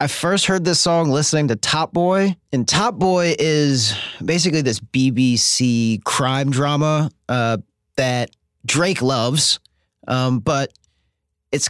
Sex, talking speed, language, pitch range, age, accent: male, 130 wpm, English, 115-150 Hz, 30-49, American